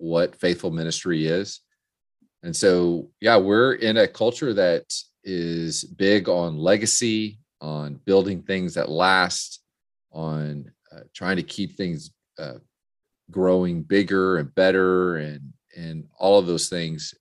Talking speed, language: 135 wpm, English